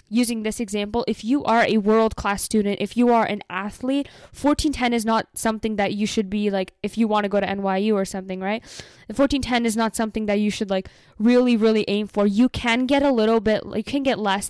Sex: female